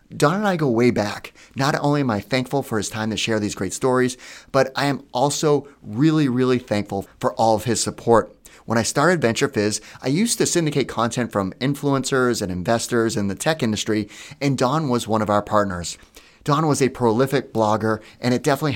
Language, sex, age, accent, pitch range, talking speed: English, male, 30-49, American, 105-140 Hz, 200 wpm